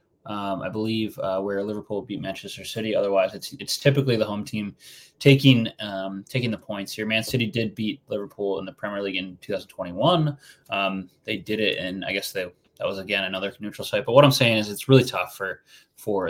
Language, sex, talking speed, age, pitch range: English, male, 210 wpm, 20-39, 100-115 Hz